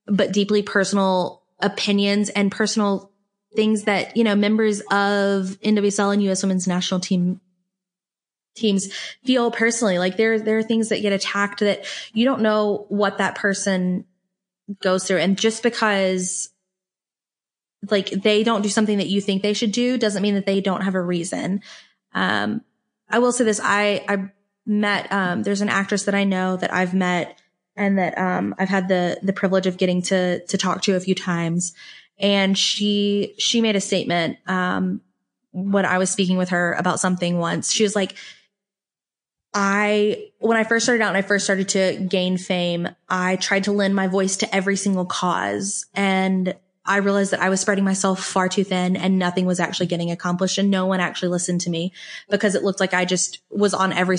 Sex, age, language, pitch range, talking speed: female, 20-39, English, 185-205 Hz, 190 wpm